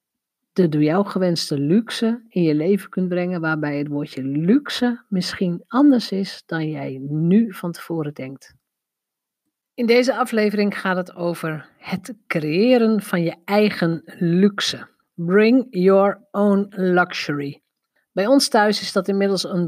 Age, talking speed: 50-69, 135 wpm